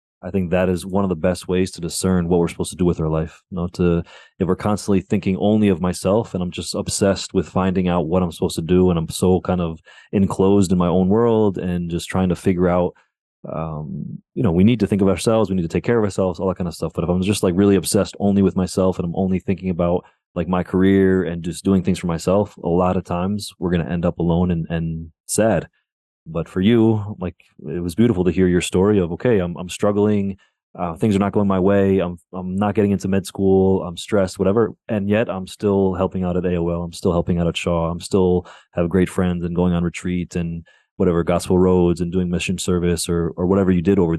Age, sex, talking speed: 30-49, male, 250 wpm